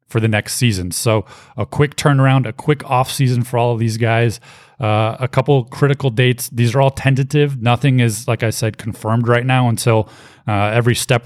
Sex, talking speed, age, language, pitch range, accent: male, 205 wpm, 20-39, English, 110-125 Hz, American